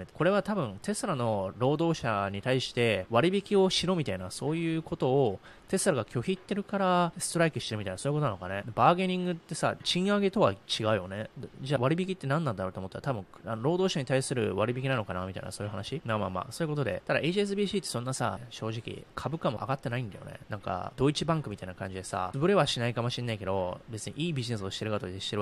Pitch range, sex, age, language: 105-155 Hz, male, 20-39, Japanese